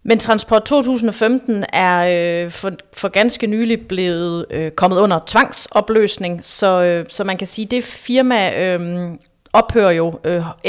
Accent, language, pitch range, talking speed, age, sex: native, Danish, 170-220 Hz, 150 wpm, 30-49, female